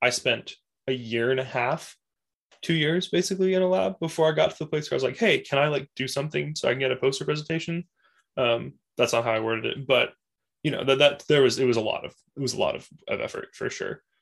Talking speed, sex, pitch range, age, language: 270 wpm, male, 120-165 Hz, 10-29, English